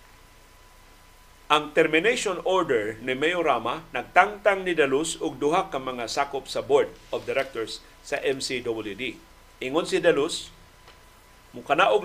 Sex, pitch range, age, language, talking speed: male, 125-170 Hz, 50-69, Filipino, 120 wpm